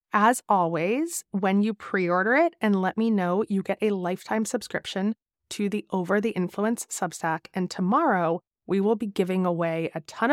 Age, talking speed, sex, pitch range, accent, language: 20-39, 175 wpm, female, 160-210 Hz, American, English